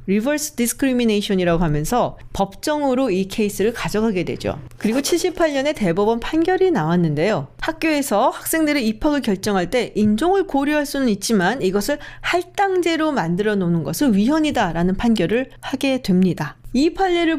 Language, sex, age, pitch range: Korean, female, 40-59, 190-285 Hz